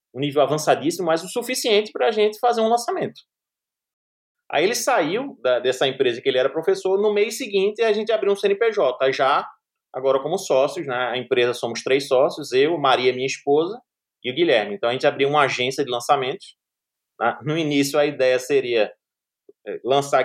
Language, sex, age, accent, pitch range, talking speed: Portuguese, male, 20-39, Brazilian, 130-205 Hz, 185 wpm